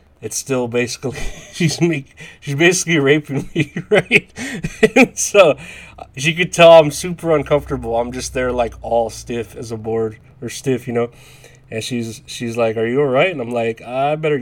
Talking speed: 175 wpm